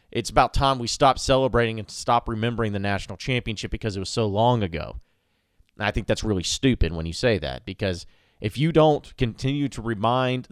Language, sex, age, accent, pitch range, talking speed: English, male, 30-49, American, 100-125 Hz, 195 wpm